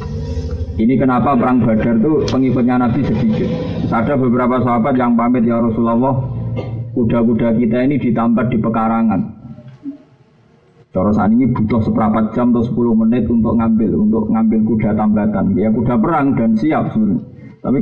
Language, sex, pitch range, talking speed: Indonesian, male, 105-125 Hz, 140 wpm